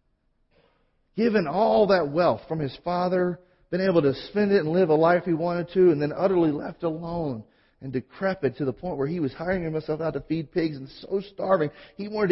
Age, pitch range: 40-59, 155-220 Hz